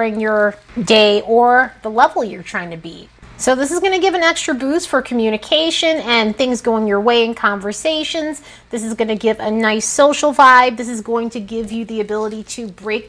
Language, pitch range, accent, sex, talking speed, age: English, 215-280 Hz, American, female, 215 wpm, 30-49